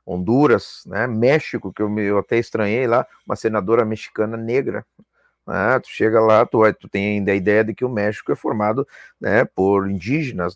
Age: 40-59